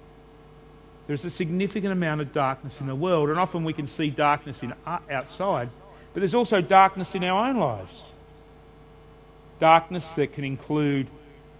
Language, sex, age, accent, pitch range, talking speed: English, male, 40-59, Australian, 145-170 Hz, 155 wpm